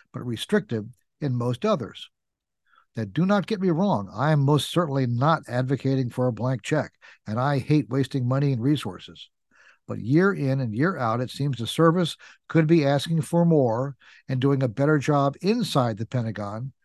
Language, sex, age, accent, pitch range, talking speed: English, male, 50-69, American, 125-170 Hz, 180 wpm